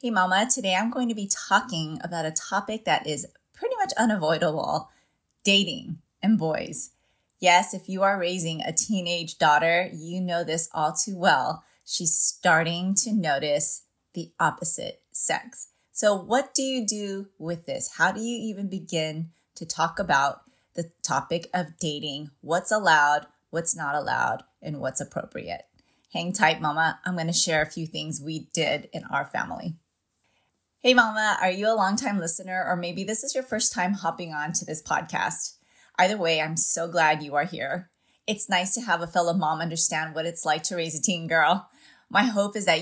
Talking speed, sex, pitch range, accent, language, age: 180 wpm, female, 165-205 Hz, American, English, 30-49